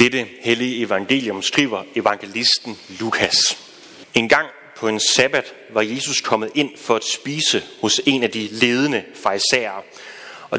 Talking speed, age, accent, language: 145 wpm, 30-49, native, Danish